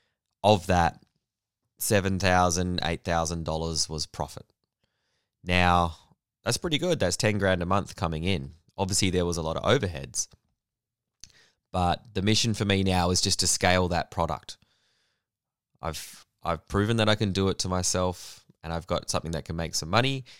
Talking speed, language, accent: 170 wpm, English, Australian